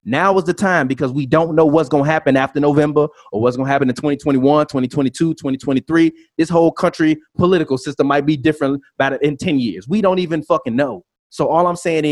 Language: English